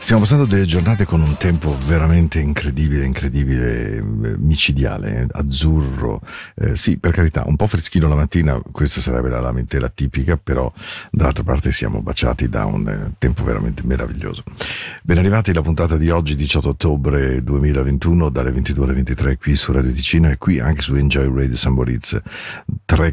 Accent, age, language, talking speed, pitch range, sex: Italian, 50-69, Spanish, 160 wpm, 70-85 Hz, male